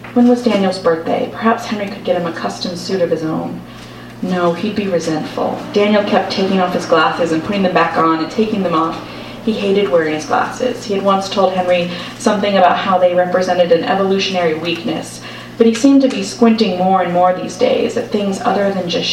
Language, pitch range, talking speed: English, 170-205 Hz, 215 wpm